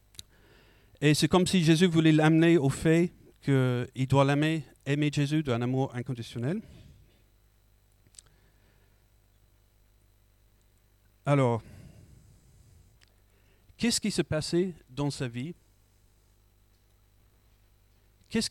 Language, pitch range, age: French, 100-165 Hz, 40-59